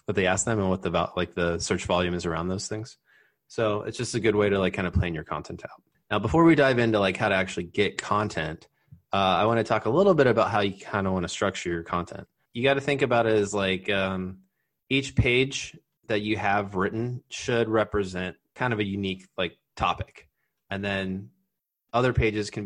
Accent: American